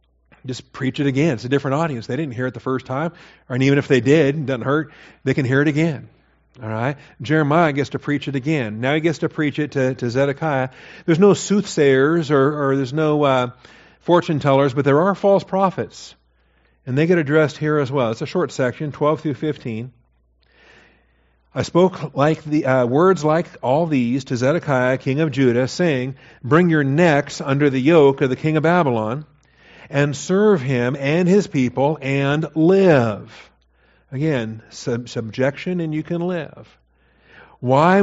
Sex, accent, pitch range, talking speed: male, American, 130-160 Hz, 185 wpm